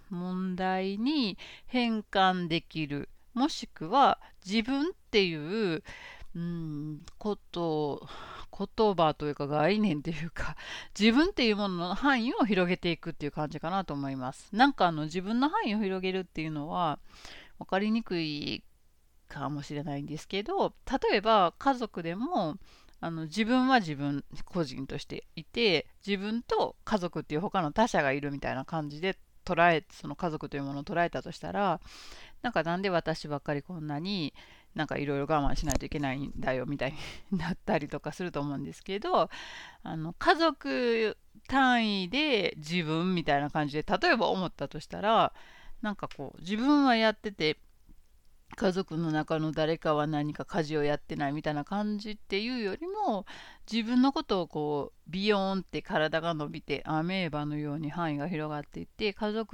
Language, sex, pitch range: Japanese, female, 150-210 Hz